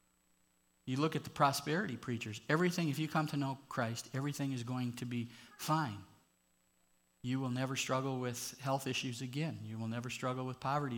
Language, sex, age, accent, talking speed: English, male, 50-69, American, 180 wpm